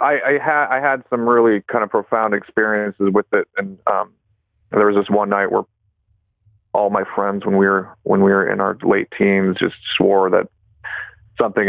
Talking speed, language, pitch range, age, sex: 195 wpm, English, 100-115 Hz, 30-49, male